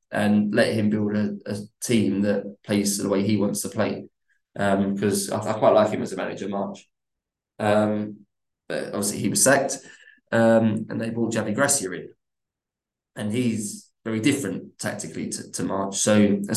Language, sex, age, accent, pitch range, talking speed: English, male, 20-39, British, 100-110 Hz, 180 wpm